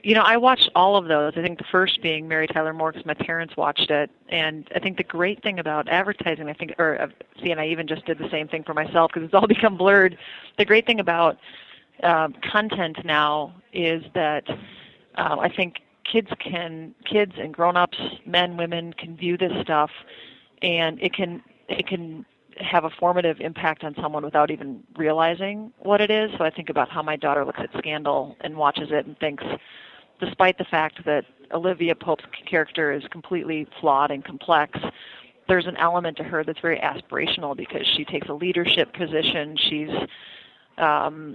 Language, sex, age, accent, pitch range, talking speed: English, female, 30-49, American, 155-185 Hz, 185 wpm